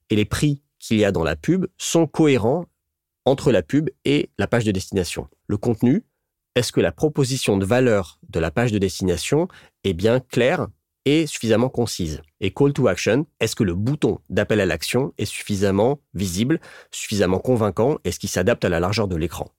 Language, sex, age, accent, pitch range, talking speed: French, male, 30-49, French, 95-120 Hz, 190 wpm